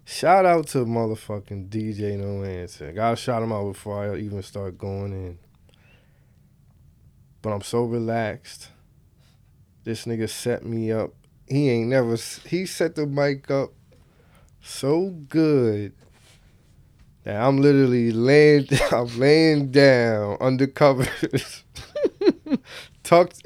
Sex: male